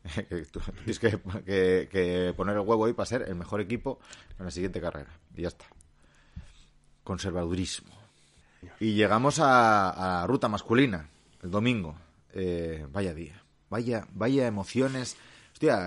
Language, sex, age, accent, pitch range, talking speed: Spanish, male, 30-49, Spanish, 90-105 Hz, 140 wpm